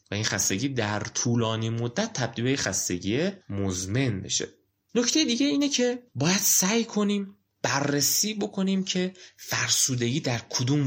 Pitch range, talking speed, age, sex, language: 105-165 Hz, 135 wpm, 30-49, male, Persian